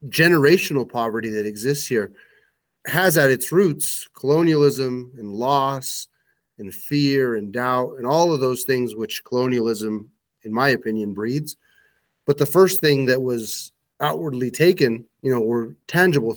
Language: English